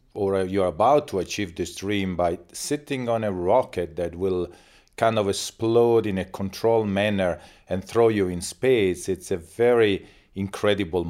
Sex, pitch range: male, 95-110 Hz